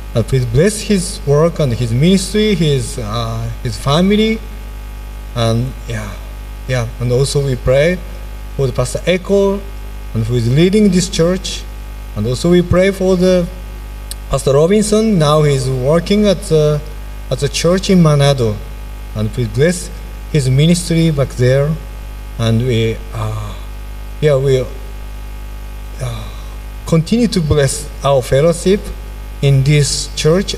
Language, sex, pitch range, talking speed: Indonesian, male, 105-155 Hz, 135 wpm